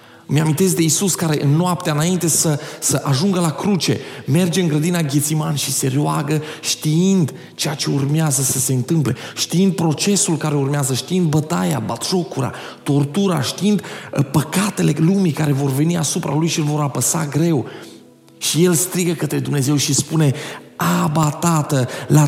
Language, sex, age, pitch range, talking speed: Romanian, male, 30-49, 140-175 Hz, 155 wpm